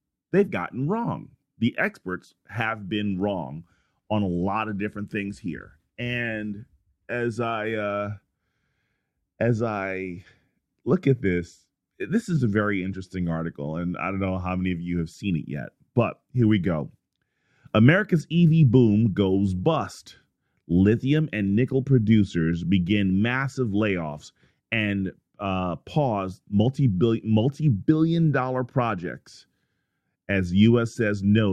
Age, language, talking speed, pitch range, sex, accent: 30-49, English, 135 wpm, 95-125 Hz, male, American